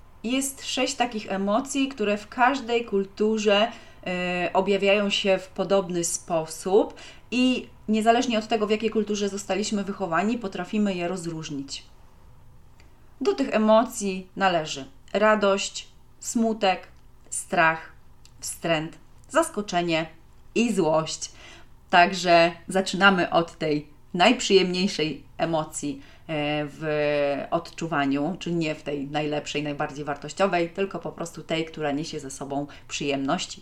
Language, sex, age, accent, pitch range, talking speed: Polish, female, 30-49, native, 155-215 Hz, 110 wpm